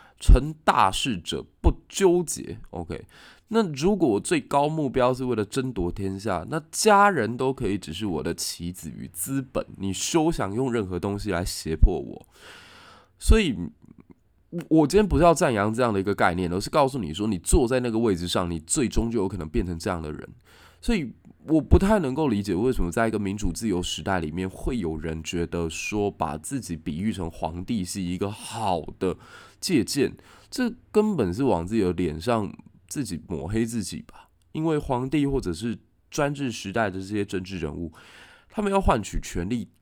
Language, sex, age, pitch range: Chinese, male, 20-39, 85-135 Hz